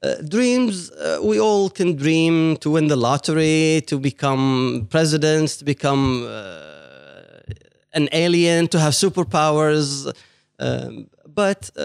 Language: English